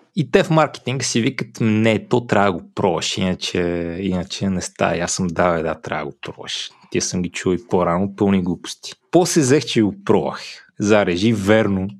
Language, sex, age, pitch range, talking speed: Bulgarian, male, 20-39, 90-110 Hz, 200 wpm